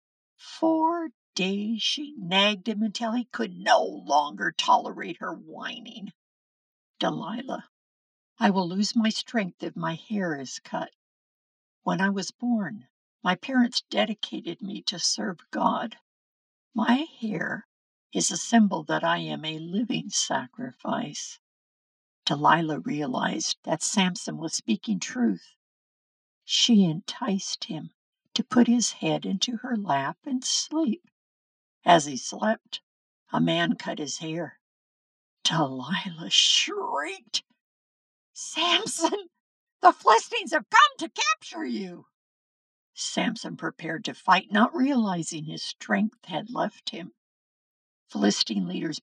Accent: American